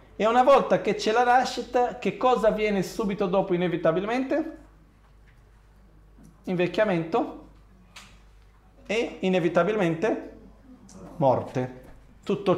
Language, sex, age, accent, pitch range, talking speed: Italian, male, 40-59, native, 135-210 Hz, 85 wpm